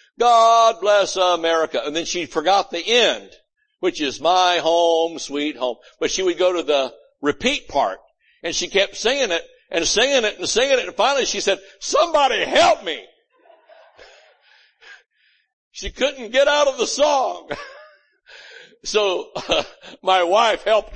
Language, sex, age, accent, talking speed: English, male, 60-79, American, 150 wpm